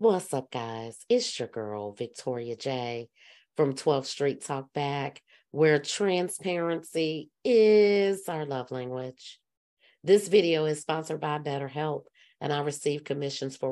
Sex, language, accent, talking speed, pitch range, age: female, English, American, 130 wpm, 130-155 Hz, 40-59